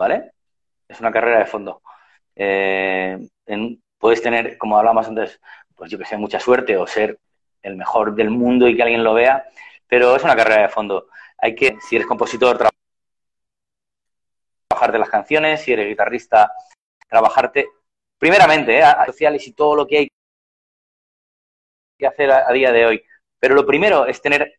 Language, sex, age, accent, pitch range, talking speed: Spanish, male, 30-49, Spanish, 115-160 Hz, 170 wpm